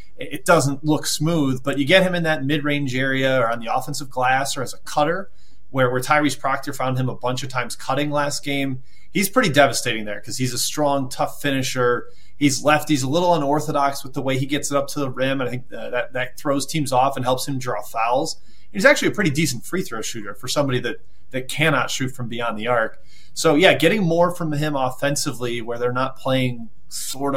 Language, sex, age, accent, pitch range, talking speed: English, male, 30-49, American, 125-155 Hz, 230 wpm